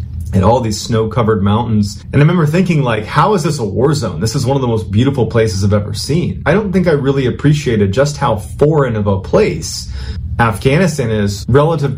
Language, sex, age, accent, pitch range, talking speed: English, male, 30-49, American, 105-125 Hz, 215 wpm